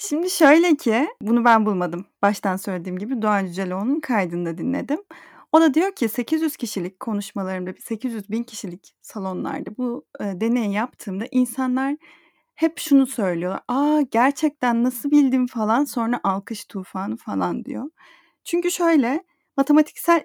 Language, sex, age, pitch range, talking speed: Turkish, female, 30-49, 205-275 Hz, 125 wpm